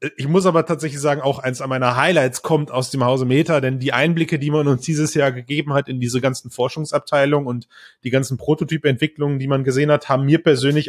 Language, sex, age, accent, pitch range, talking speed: German, male, 30-49, German, 125-155 Hz, 220 wpm